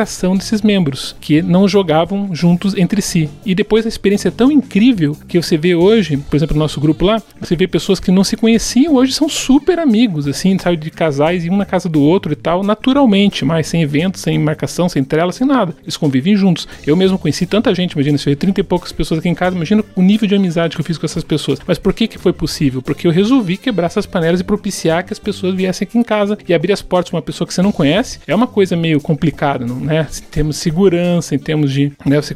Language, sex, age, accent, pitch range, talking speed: Portuguese, male, 40-59, Brazilian, 155-210 Hz, 250 wpm